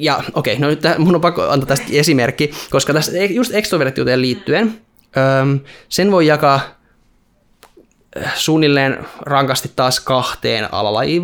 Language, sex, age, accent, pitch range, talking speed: Finnish, male, 20-39, native, 125-170 Hz, 125 wpm